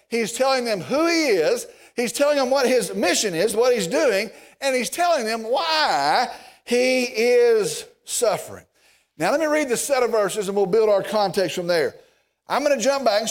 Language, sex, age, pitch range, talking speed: English, male, 50-69, 225-315 Hz, 205 wpm